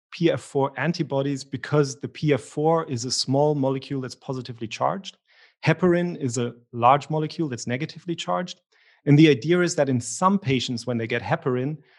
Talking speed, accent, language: 160 wpm, German, English